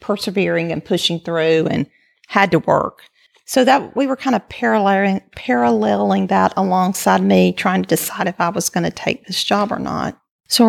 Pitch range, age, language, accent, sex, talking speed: 195-235 Hz, 50-69, English, American, female, 185 wpm